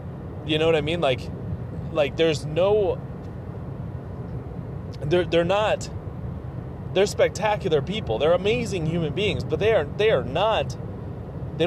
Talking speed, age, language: 135 wpm, 30-49, English